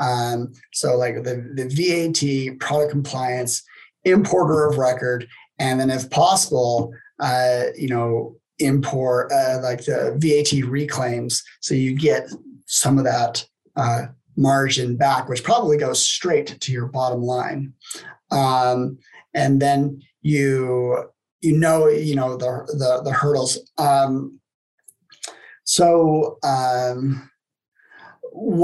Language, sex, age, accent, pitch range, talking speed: English, male, 30-49, American, 130-165 Hz, 115 wpm